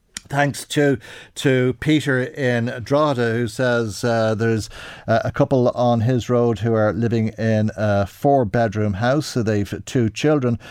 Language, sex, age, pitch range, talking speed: English, male, 50-69, 105-125 Hz, 150 wpm